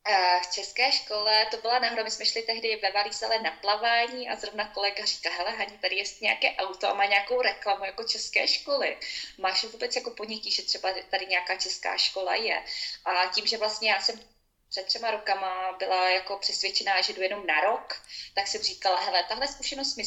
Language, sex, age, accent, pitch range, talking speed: Czech, female, 20-39, native, 190-230 Hz, 195 wpm